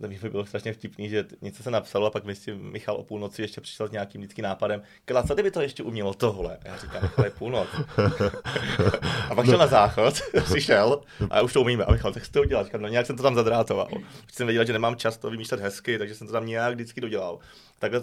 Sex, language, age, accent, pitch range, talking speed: male, Czech, 30-49, native, 105-120 Hz, 240 wpm